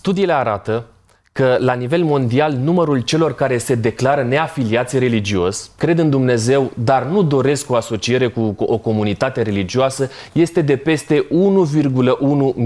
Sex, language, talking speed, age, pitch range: male, Romanian, 140 wpm, 30-49, 120-160 Hz